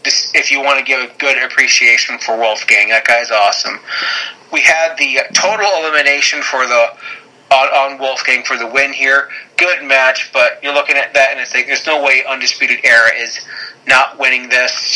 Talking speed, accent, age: 180 wpm, American, 30-49